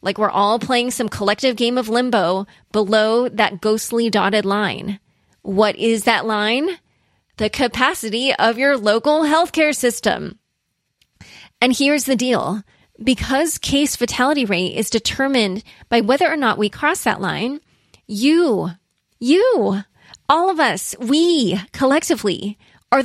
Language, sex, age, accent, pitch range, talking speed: English, female, 20-39, American, 200-265 Hz, 135 wpm